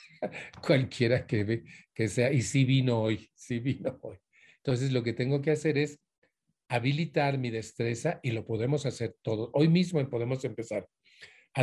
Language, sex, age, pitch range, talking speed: Spanish, male, 40-59, 120-150 Hz, 175 wpm